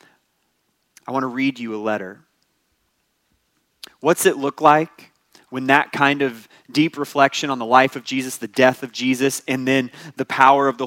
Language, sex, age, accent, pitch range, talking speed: English, male, 30-49, American, 115-155 Hz, 175 wpm